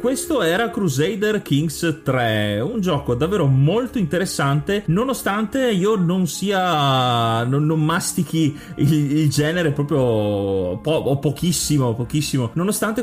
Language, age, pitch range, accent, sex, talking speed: Italian, 30-49, 130-175 Hz, native, male, 115 wpm